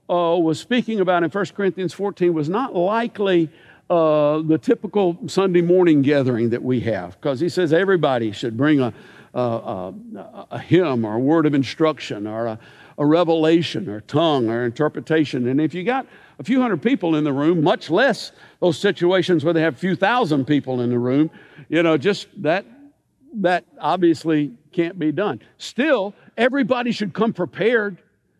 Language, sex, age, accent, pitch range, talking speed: English, male, 60-79, American, 150-205 Hz, 175 wpm